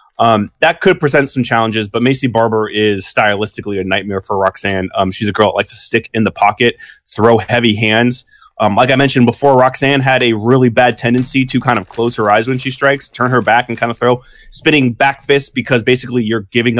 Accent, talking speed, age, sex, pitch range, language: American, 225 wpm, 20-39, male, 110-130 Hz, English